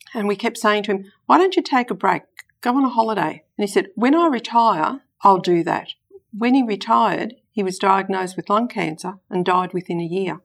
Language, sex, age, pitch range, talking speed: English, female, 50-69, 170-205 Hz, 225 wpm